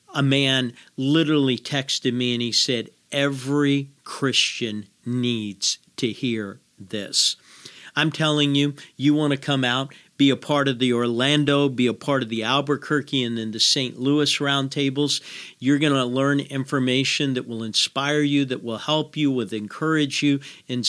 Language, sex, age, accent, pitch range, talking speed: English, male, 50-69, American, 120-145 Hz, 165 wpm